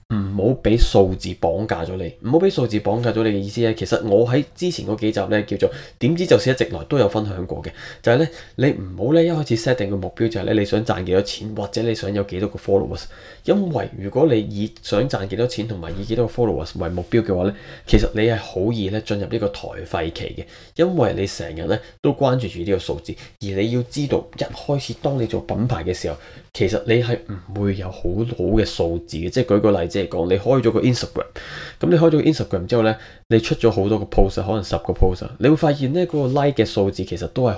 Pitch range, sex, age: 95-120 Hz, male, 20-39